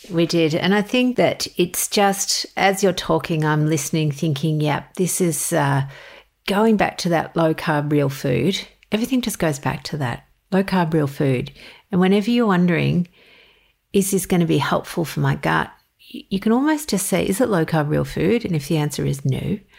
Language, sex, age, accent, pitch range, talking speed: English, female, 50-69, Australian, 155-210 Hz, 190 wpm